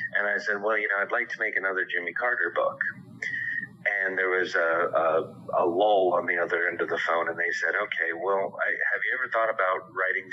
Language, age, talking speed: English, 40-59, 220 wpm